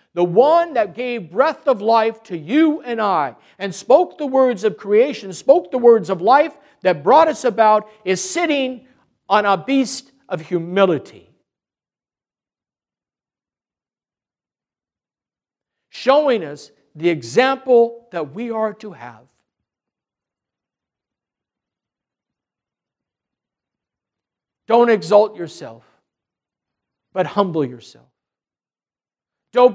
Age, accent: 60-79, American